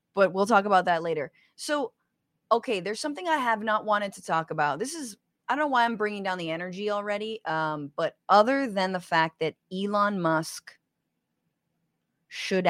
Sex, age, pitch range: female, 30-49, 160-215 Hz